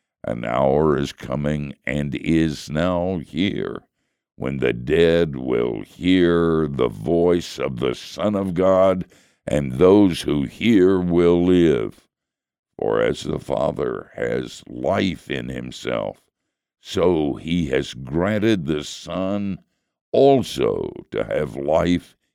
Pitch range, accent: 70-90 Hz, American